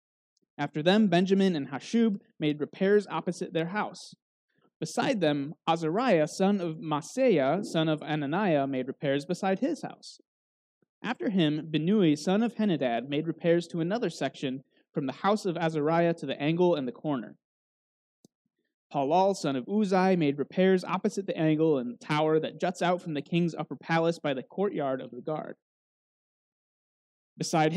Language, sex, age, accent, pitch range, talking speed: English, male, 30-49, American, 150-195 Hz, 160 wpm